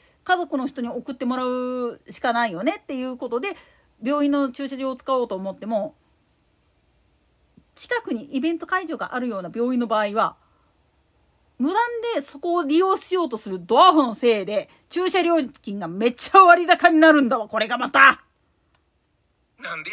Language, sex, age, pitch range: Japanese, female, 40-59, 235-335 Hz